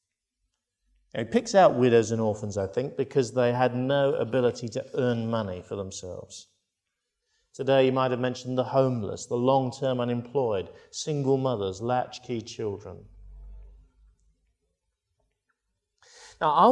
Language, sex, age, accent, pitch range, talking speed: English, male, 50-69, British, 125-195 Hz, 120 wpm